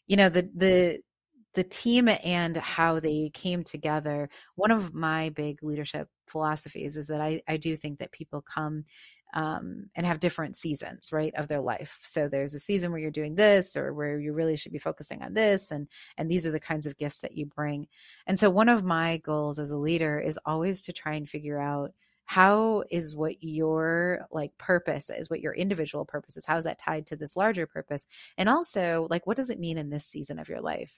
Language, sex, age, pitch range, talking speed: English, female, 30-49, 150-175 Hz, 215 wpm